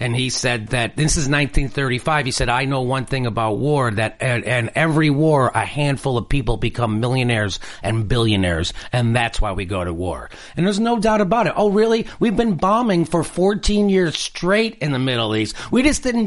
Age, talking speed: 40-59, 210 wpm